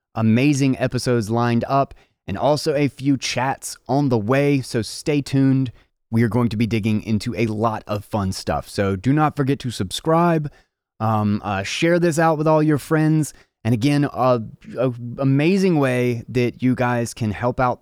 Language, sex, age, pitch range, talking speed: English, male, 20-39, 110-140 Hz, 180 wpm